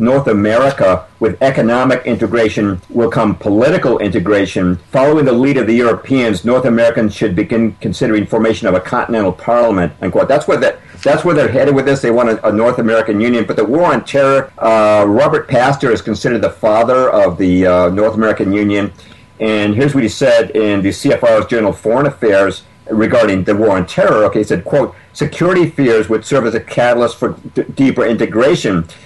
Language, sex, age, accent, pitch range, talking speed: English, male, 50-69, American, 105-125 Hz, 190 wpm